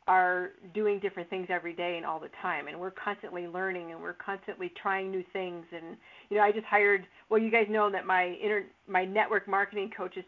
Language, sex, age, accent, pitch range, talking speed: English, female, 50-69, American, 190-230 Hz, 220 wpm